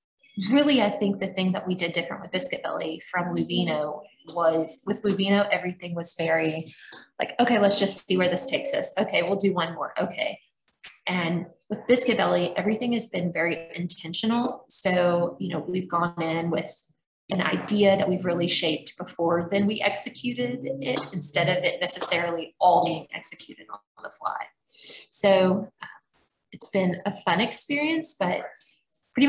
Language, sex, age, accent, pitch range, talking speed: English, female, 20-39, American, 170-210 Hz, 165 wpm